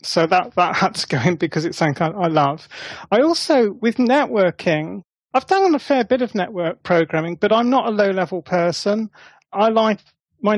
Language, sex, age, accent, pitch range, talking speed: English, male, 30-49, British, 180-225 Hz, 210 wpm